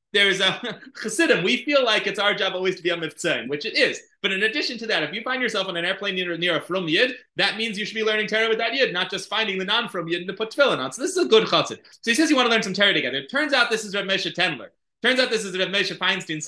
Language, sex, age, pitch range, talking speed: English, male, 20-39, 160-210 Hz, 310 wpm